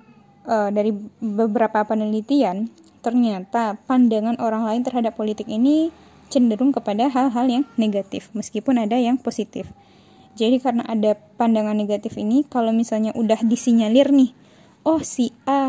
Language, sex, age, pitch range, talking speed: Indonesian, female, 10-29, 220-270 Hz, 130 wpm